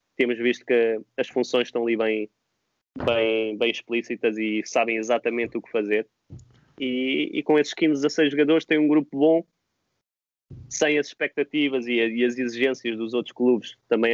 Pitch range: 110-130 Hz